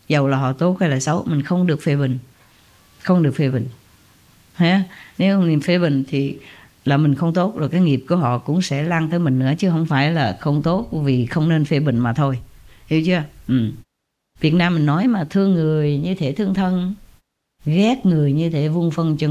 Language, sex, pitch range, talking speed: English, female, 140-185 Hz, 220 wpm